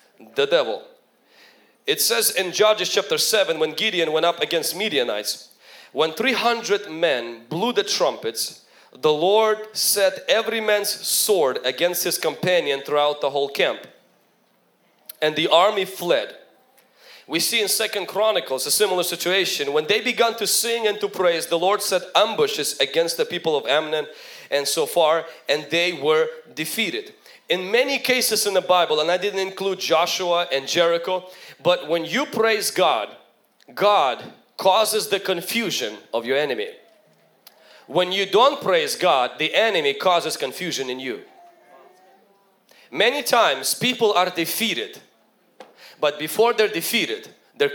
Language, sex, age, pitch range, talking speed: English, male, 30-49, 175-245 Hz, 145 wpm